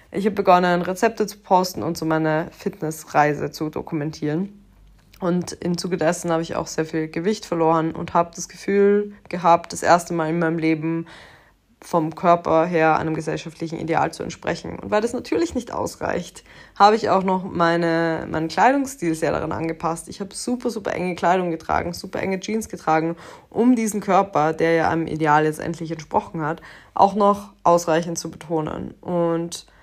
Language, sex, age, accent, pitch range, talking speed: German, female, 20-39, German, 160-190 Hz, 170 wpm